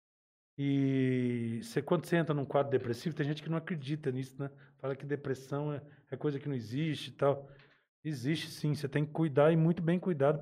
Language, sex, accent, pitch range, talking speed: Portuguese, male, Brazilian, 135-160 Hz, 200 wpm